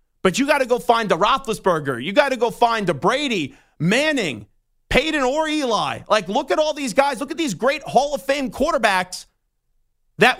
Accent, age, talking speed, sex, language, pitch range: American, 40-59, 195 wpm, male, English, 195-260 Hz